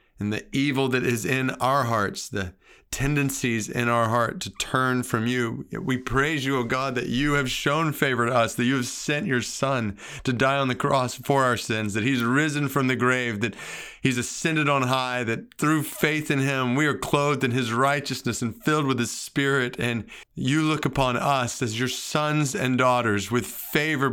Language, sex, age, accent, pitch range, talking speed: English, male, 40-59, American, 115-140 Hz, 205 wpm